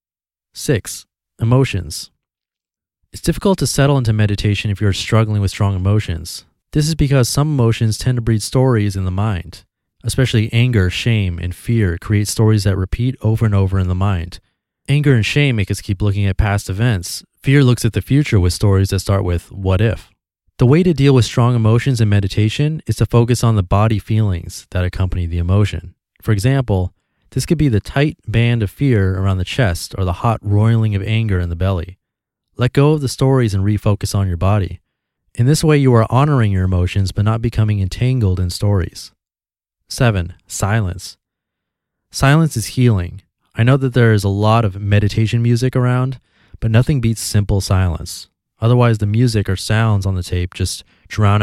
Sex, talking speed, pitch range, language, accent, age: male, 185 wpm, 95-120 Hz, English, American, 30-49